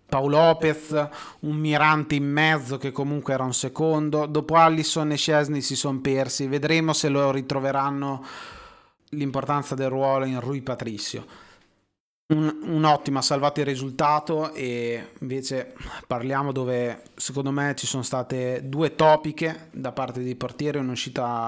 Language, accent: Italian, native